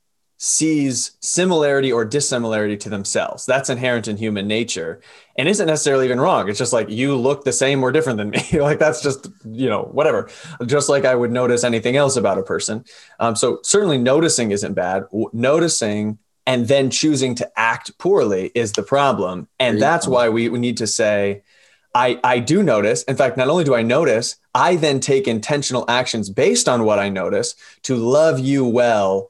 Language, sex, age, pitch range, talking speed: English, male, 20-39, 110-150 Hz, 190 wpm